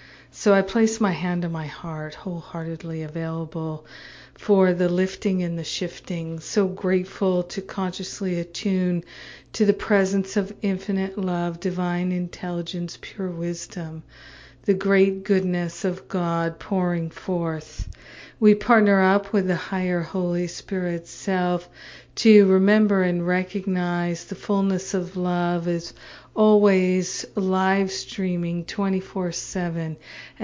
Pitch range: 175-195 Hz